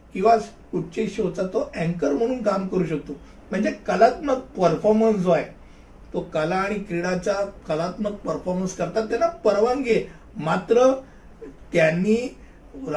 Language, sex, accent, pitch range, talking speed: Hindi, male, native, 185-225 Hz, 95 wpm